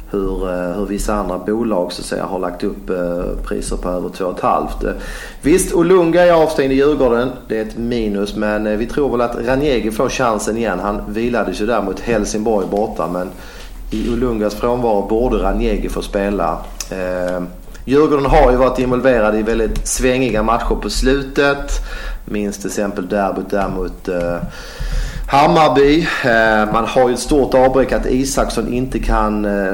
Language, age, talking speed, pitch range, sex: English, 40-59, 165 wpm, 105-130 Hz, male